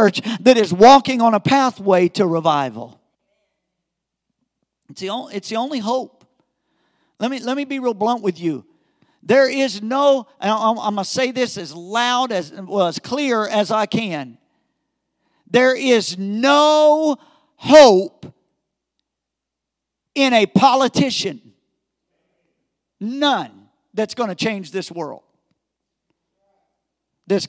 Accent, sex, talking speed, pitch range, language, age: American, male, 120 wpm, 200-280 Hz, English, 50-69